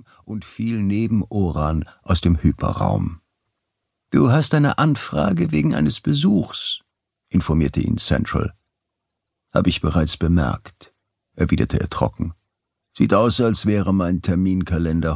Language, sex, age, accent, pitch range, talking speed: German, male, 50-69, German, 85-110 Hz, 120 wpm